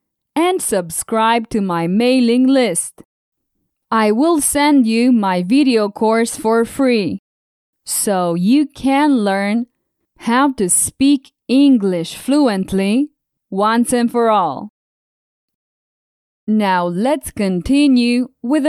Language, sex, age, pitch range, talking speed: English, female, 20-39, 200-275 Hz, 105 wpm